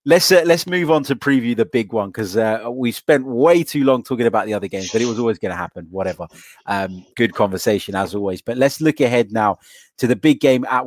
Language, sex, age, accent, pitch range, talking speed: English, male, 30-49, British, 105-130 Hz, 250 wpm